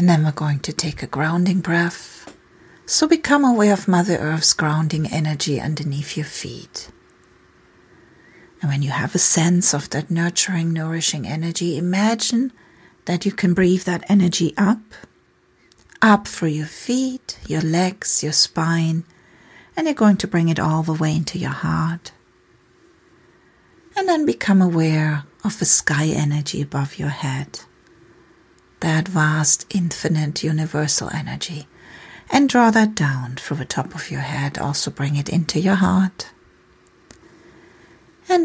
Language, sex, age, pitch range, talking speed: English, female, 40-59, 150-185 Hz, 145 wpm